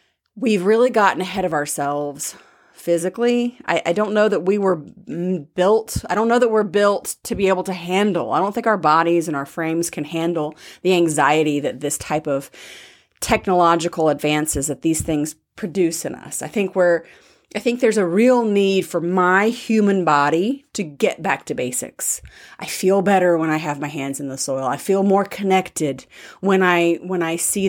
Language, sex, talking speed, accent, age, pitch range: English, female, 190 wpm, American, 30-49, 160-200 Hz